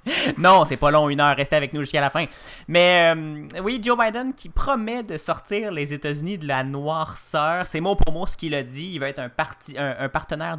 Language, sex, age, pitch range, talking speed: French, male, 30-49, 130-175 Hz, 240 wpm